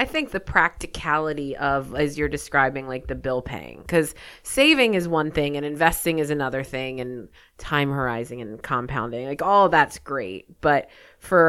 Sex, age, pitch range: female, 30-49, 135-165 Hz